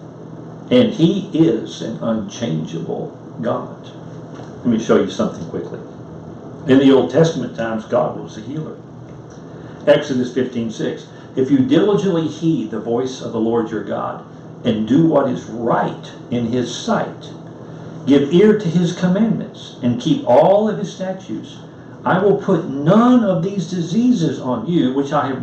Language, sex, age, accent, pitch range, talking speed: English, male, 60-79, American, 130-190 Hz, 155 wpm